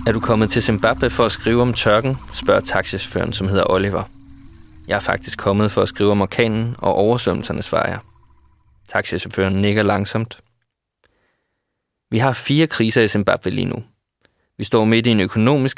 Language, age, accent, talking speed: Danish, 20-39, native, 170 wpm